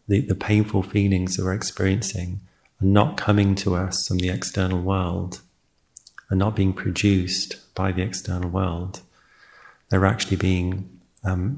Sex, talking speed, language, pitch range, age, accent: male, 145 wpm, English, 90-100 Hz, 40-59, British